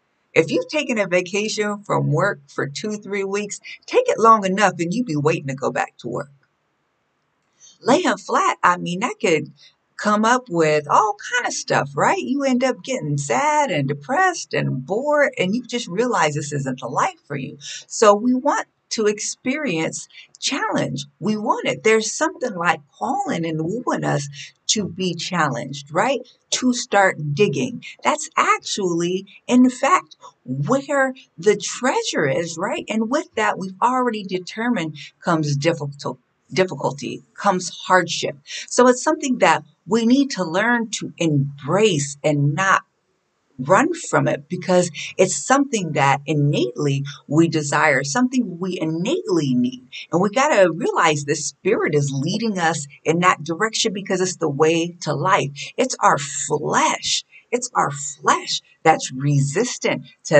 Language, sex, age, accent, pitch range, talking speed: English, female, 50-69, American, 150-235 Hz, 155 wpm